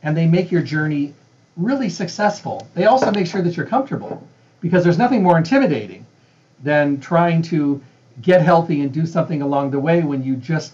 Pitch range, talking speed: 140-175 Hz, 185 wpm